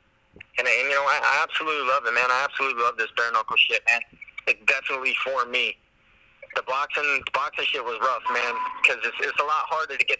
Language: English